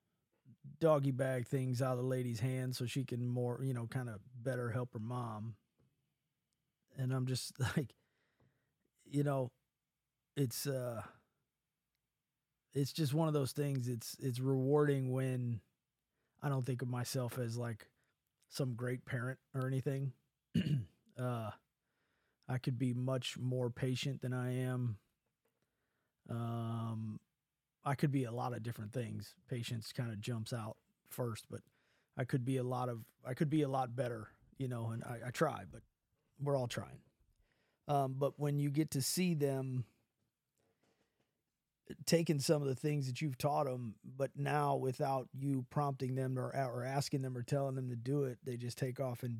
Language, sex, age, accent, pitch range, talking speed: English, male, 30-49, American, 125-140 Hz, 165 wpm